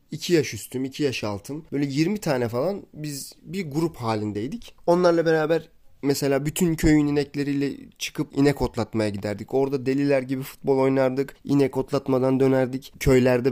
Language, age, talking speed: Turkish, 30-49, 145 wpm